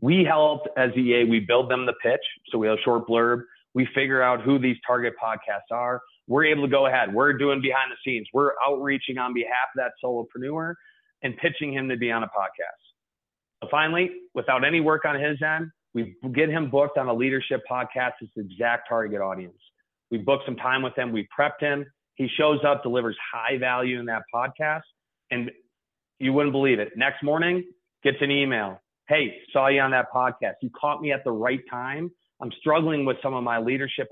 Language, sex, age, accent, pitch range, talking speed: English, male, 30-49, American, 120-145 Hz, 205 wpm